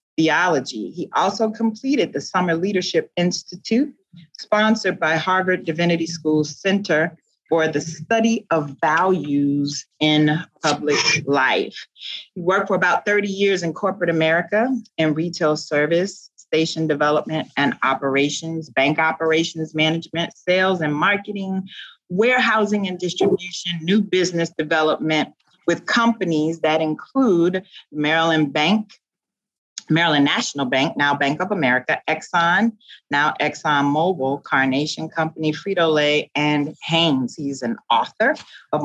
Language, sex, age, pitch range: English, female, 40-59, 150-190 Hz